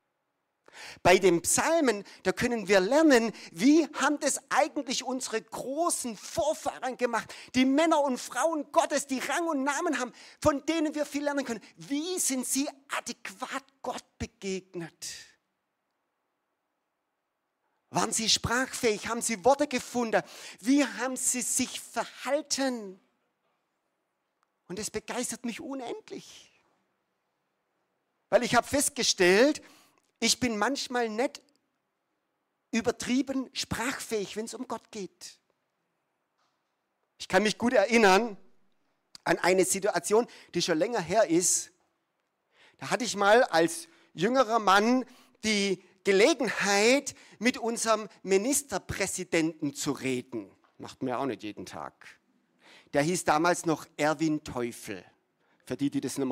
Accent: German